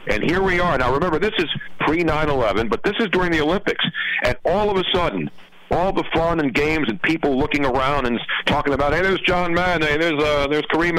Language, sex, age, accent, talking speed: English, male, 50-69, American, 225 wpm